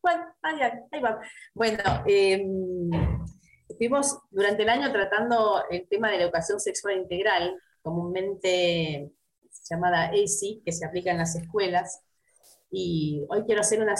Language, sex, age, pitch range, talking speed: Spanish, female, 30-49, 165-210 Hz, 130 wpm